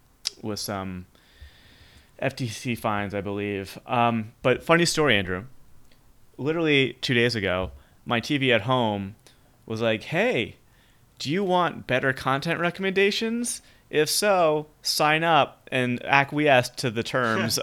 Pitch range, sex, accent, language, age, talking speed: 95-125 Hz, male, American, English, 30-49, 125 wpm